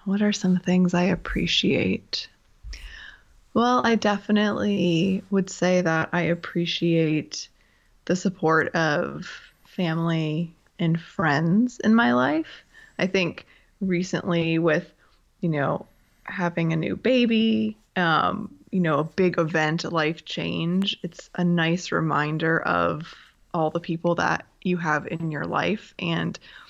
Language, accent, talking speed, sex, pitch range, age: English, American, 130 wpm, female, 165-190 Hz, 20-39